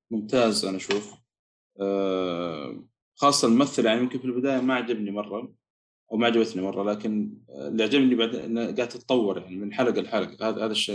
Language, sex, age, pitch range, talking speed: Arabic, male, 20-39, 105-130 Hz, 155 wpm